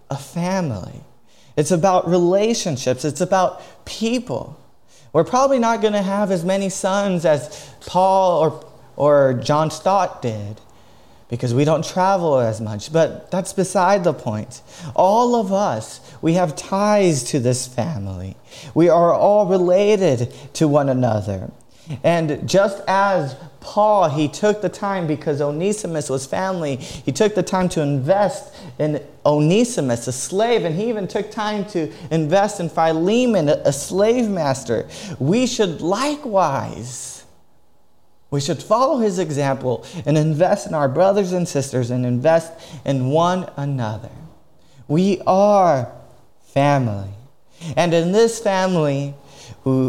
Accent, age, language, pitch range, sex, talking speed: American, 30-49, English, 140-195 Hz, male, 135 wpm